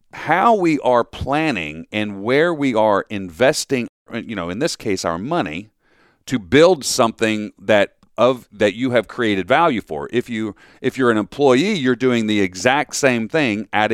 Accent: American